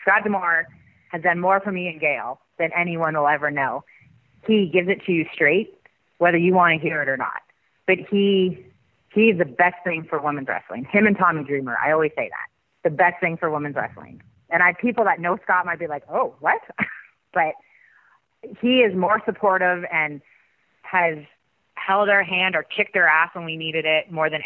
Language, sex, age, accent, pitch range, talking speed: English, female, 30-49, American, 155-195 Hz, 200 wpm